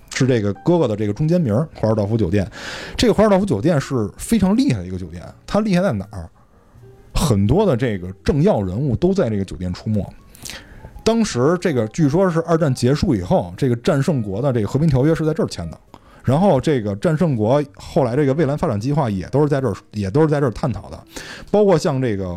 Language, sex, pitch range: Chinese, male, 105-160 Hz